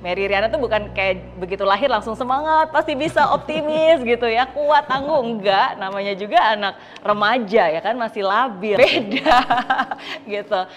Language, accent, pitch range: Indonesian, native, 175-240 Hz